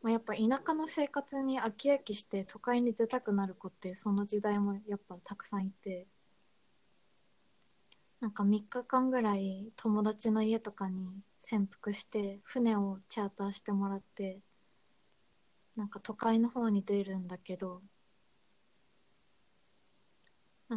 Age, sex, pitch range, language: 20-39, female, 195-230 Hz, Japanese